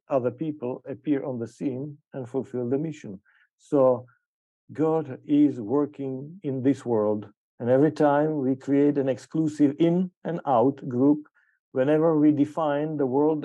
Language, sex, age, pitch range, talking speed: English, male, 50-69, 125-150 Hz, 145 wpm